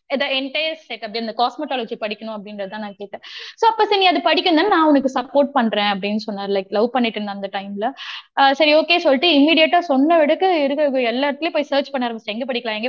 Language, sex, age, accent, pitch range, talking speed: Tamil, female, 20-39, native, 225-310 Hz, 130 wpm